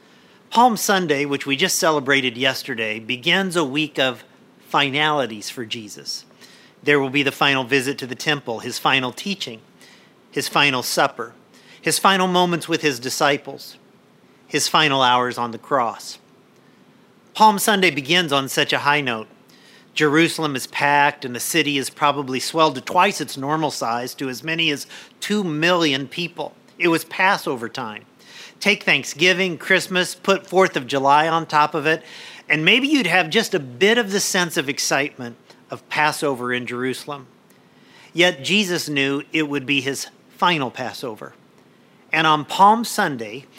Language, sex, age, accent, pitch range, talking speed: English, male, 50-69, American, 135-180 Hz, 155 wpm